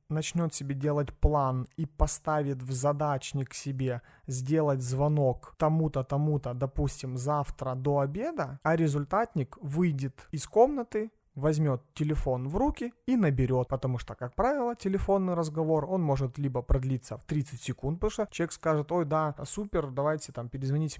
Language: Russian